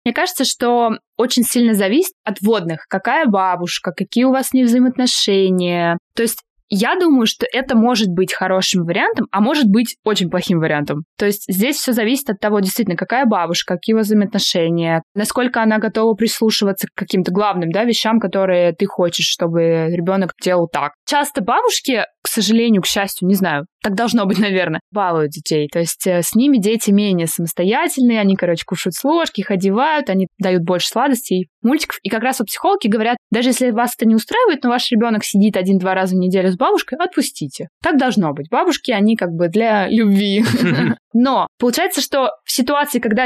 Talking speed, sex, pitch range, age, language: 185 wpm, female, 185-245 Hz, 20-39, Russian